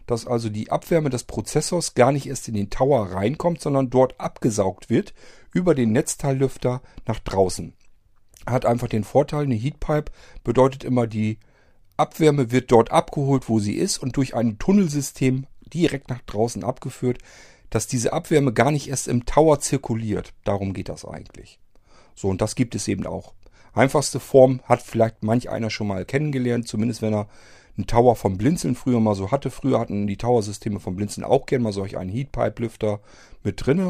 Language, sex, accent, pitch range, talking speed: German, male, German, 105-130 Hz, 175 wpm